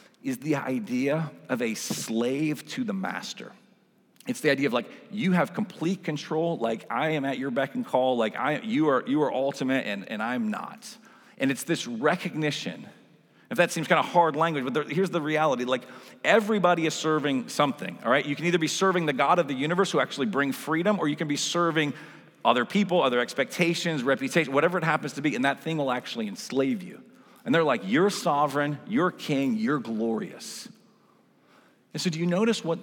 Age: 40-59